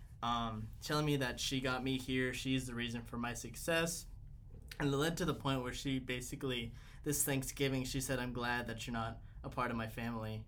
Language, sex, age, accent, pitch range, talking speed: English, male, 20-39, American, 120-145 Hz, 210 wpm